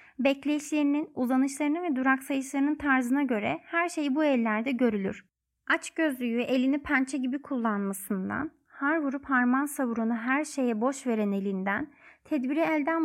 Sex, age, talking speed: female, 30-49, 135 wpm